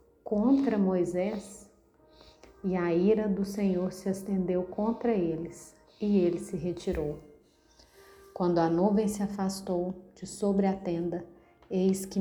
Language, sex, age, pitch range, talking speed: Portuguese, female, 40-59, 180-200 Hz, 130 wpm